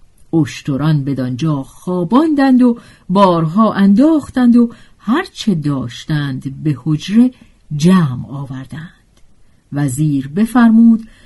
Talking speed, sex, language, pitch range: 80 wpm, female, Persian, 145-240 Hz